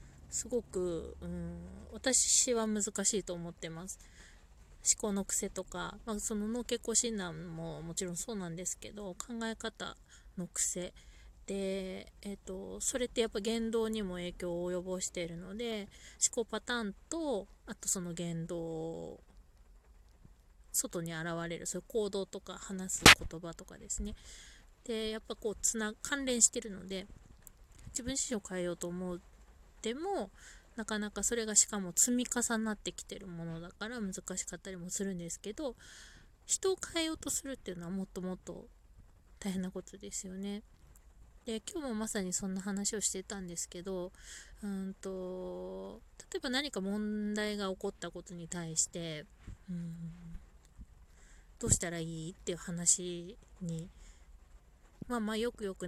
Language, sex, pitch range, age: Japanese, female, 175-220 Hz, 20-39